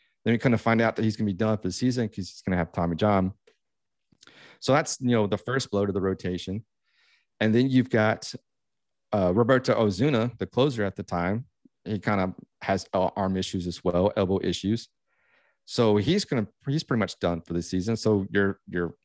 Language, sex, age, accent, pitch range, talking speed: English, male, 40-59, American, 95-115 Hz, 215 wpm